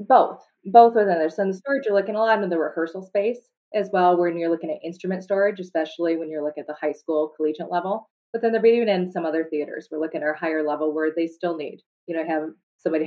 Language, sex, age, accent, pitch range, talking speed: English, female, 30-49, American, 155-175 Hz, 260 wpm